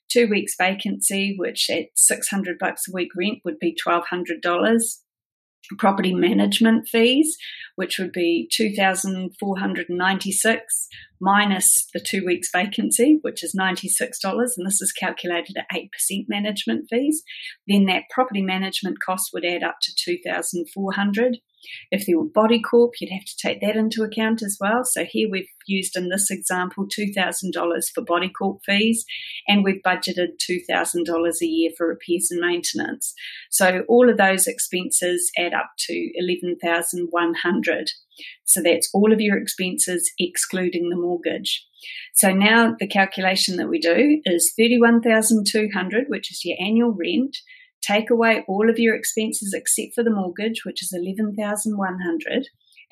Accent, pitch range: Australian, 180-225 Hz